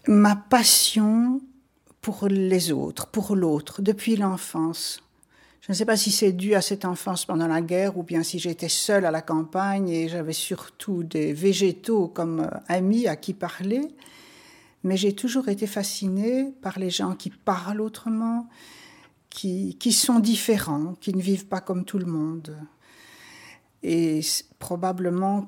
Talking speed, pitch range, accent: 155 wpm, 170-210 Hz, French